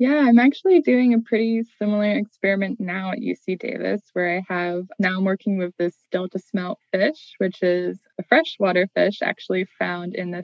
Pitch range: 180-215 Hz